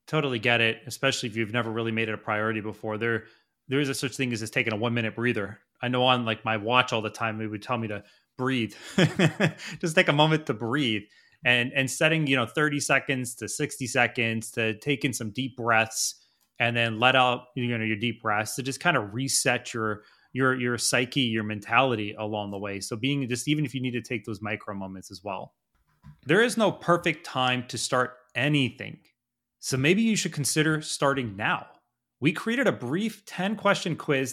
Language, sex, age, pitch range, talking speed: English, male, 30-49, 115-145 Hz, 210 wpm